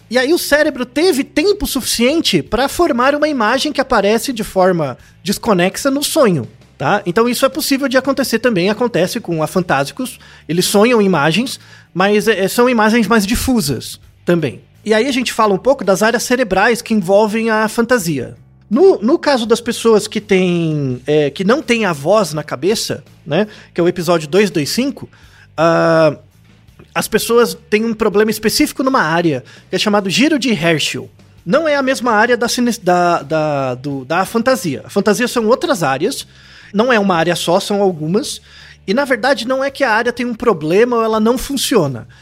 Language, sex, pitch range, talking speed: Portuguese, male, 175-245 Hz, 185 wpm